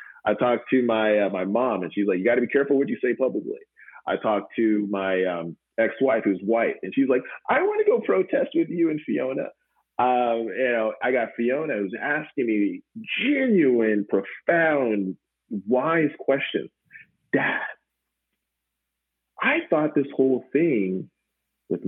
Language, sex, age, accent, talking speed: English, male, 40-59, American, 160 wpm